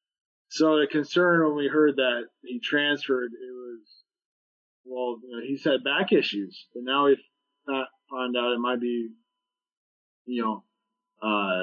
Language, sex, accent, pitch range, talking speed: English, male, American, 120-155 Hz, 135 wpm